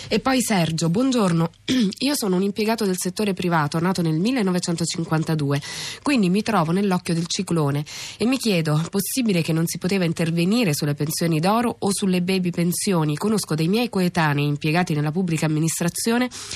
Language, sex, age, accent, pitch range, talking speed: Italian, female, 20-39, native, 160-200 Hz, 160 wpm